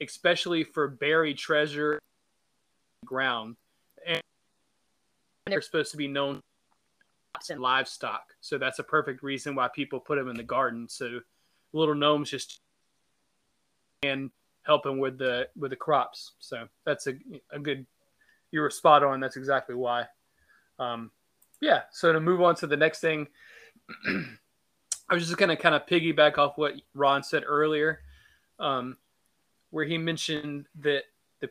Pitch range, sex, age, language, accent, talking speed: 135-155 Hz, male, 20-39, English, American, 150 wpm